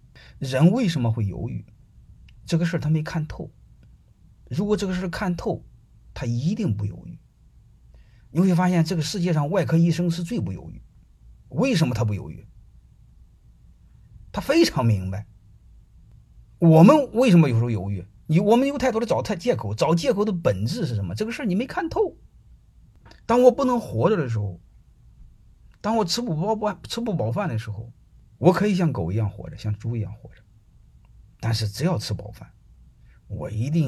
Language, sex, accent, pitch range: Chinese, male, native, 105-170 Hz